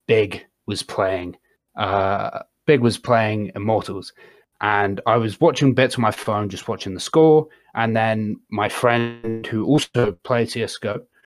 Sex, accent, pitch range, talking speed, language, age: male, British, 105-125 Hz, 150 wpm, English, 30-49